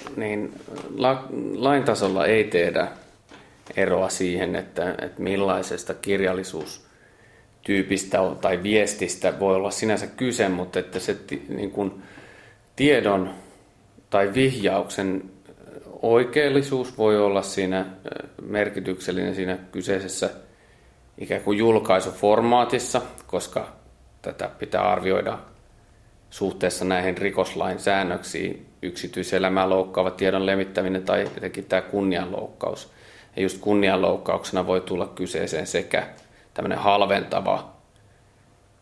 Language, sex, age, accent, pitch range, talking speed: Finnish, male, 30-49, native, 95-105 Hz, 85 wpm